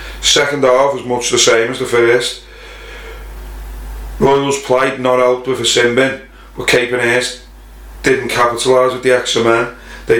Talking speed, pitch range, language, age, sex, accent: 145 wpm, 120-130 Hz, English, 30-49, male, British